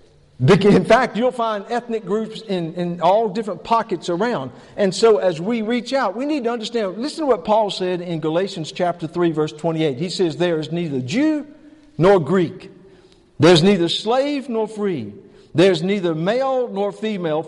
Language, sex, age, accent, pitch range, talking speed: English, male, 50-69, American, 180-250 Hz, 175 wpm